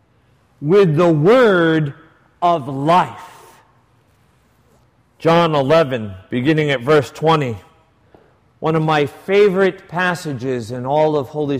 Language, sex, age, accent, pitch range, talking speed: English, male, 50-69, American, 125-180 Hz, 105 wpm